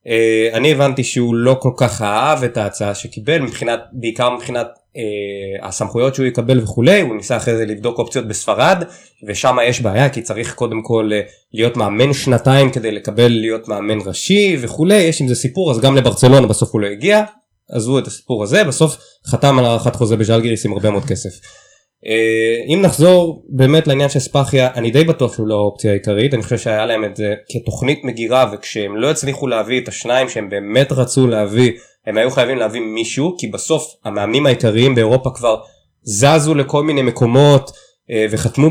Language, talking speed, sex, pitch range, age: Hebrew, 175 wpm, male, 110-140 Hz, 20-39